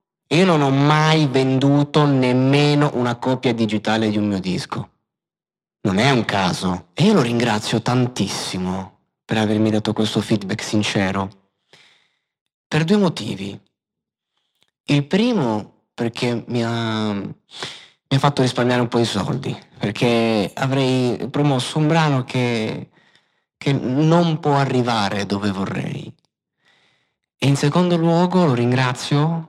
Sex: male